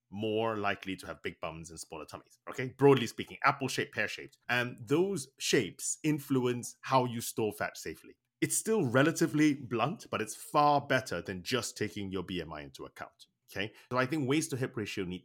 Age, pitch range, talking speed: 30-49, 95-140 Hz, 195 wpm